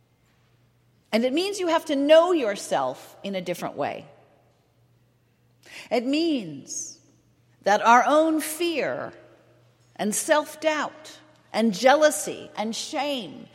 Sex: female